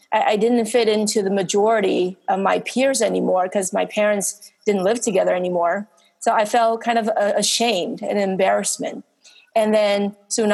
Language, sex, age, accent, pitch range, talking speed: English, female, 30-49, American, 195-240 Hz, 160 wpm